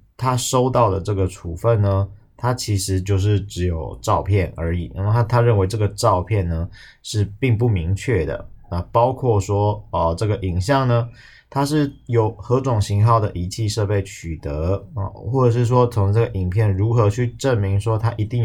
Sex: male